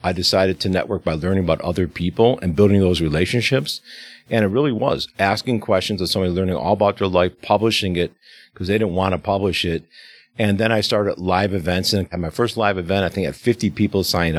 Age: 50-69